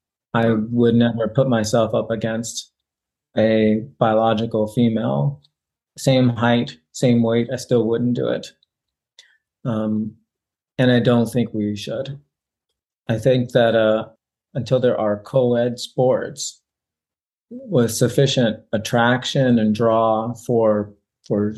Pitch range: 110-125 Hz